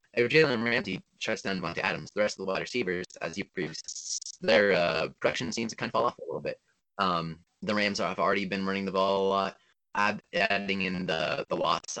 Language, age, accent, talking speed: English, 20-39, American, 225 wpm